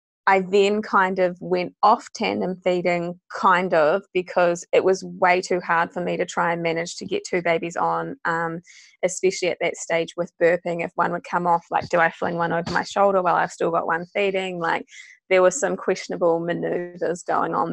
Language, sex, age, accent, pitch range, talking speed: English, female, 20-39, Australian, 165-190 Hz, 205 wpm